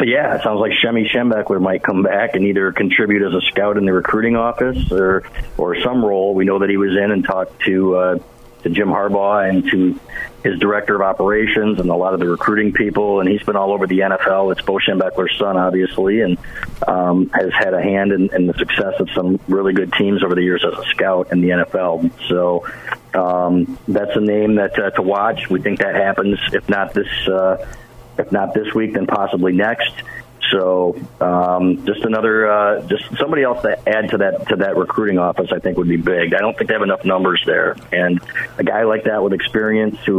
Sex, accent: male, American